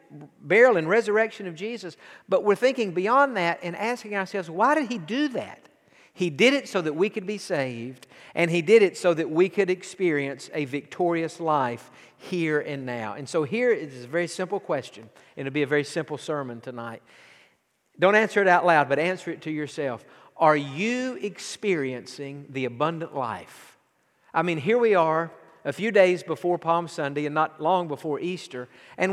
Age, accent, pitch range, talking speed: 50-69, American, 150-200 Hz, 185 wpm